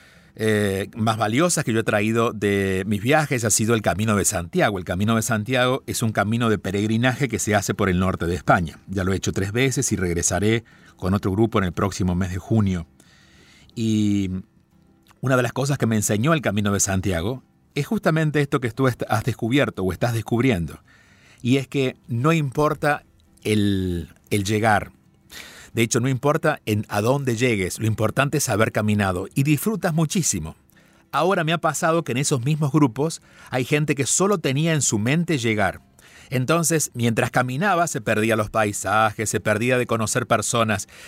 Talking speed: 185 wpm